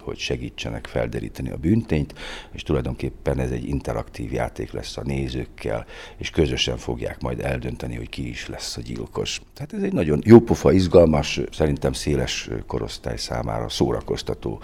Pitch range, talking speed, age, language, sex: 65-85 Hz, 150 wpm, 50-69, Hungarian, male